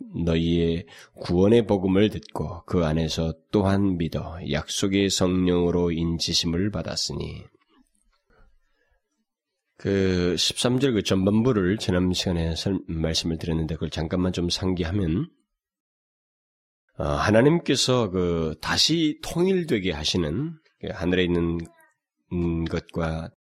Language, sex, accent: Korean, male, native